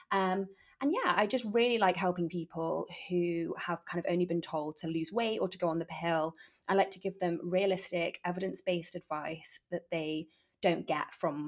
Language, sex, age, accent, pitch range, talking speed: English, female, 20-39, British, 170-195 Hz, 200 wpm